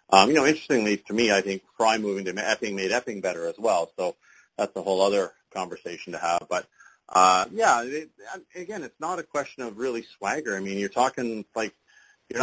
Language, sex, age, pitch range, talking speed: English, male, 40-59, 95-120 Hz, 210 wpm